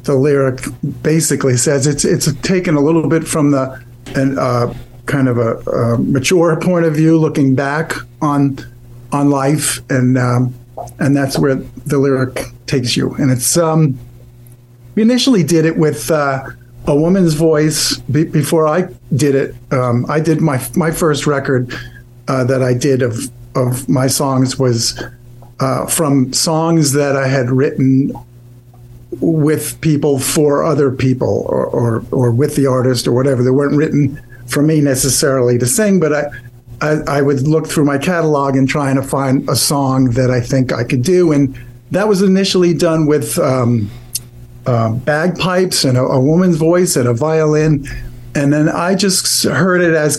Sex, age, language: male, 50-69, English